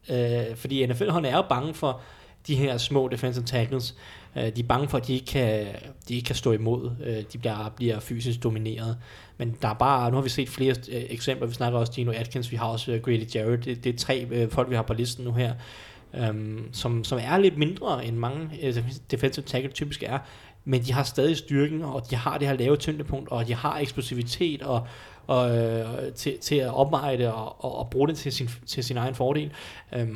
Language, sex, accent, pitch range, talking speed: Danish, male, native, 115-135 Hz, 215 wpm